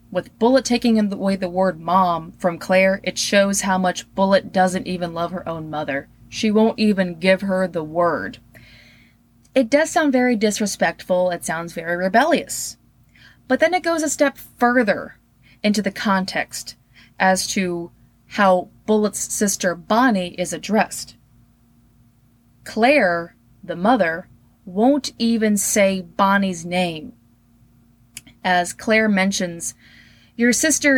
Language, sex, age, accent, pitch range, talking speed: English, female, 20-39, American, 170-225 Hz, 130 wpm